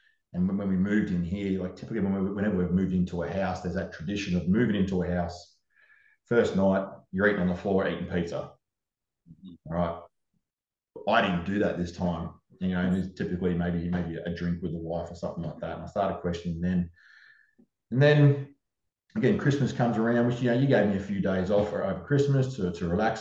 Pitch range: 90-115 Hz